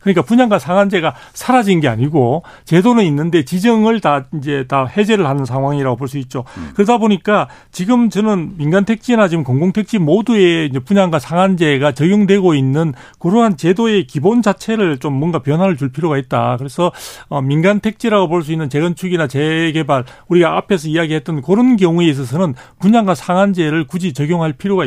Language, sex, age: Korean, male, 40-59